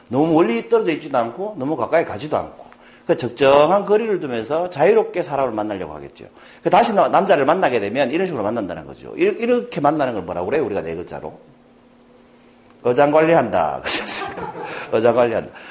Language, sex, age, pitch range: Korean, male, 40-59, 150-245 Hz